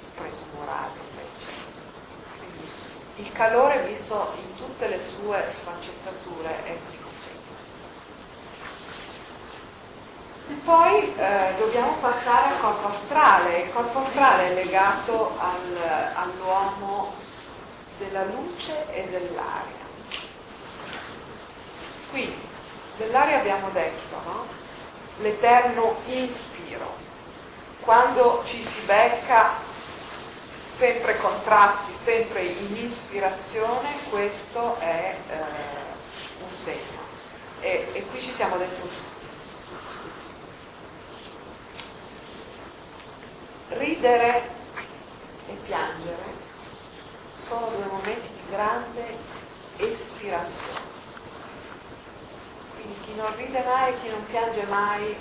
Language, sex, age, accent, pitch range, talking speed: Italian, female, 40-59, native, 195-245 Hz, 85 wpm